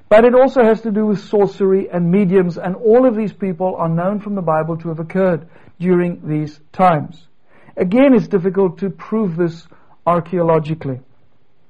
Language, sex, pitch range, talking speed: Danish, male, 155-190 Hz, 170 wpm